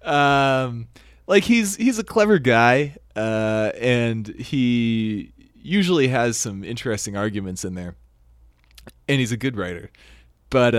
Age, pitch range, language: 30-49, 95-130 Hz, English